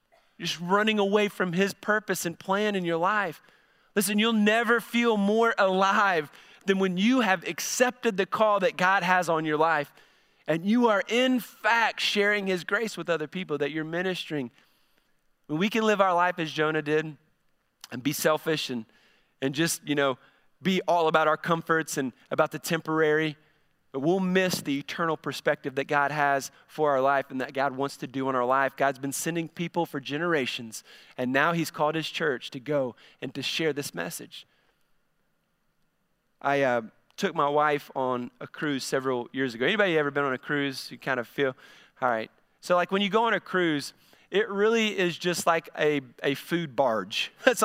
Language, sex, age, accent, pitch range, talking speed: English, male, 30-49, American, 140-190 Hz, 190 wpm